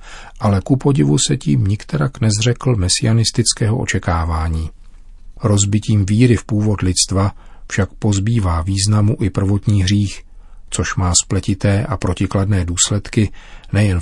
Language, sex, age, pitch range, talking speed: Czech, male, 40-59, 95-115 Hz, 115 wpm